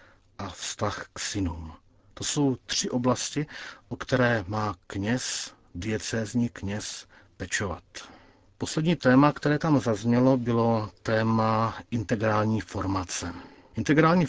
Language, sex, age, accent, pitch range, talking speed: Czech, male, 50-69, native, 95-125 Hz, 105 wpm